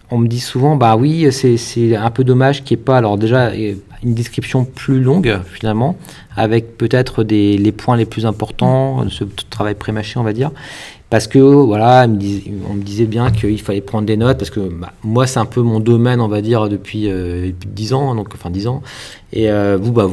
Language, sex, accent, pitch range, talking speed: French, male, French, 100-130 Hz, 220 wpm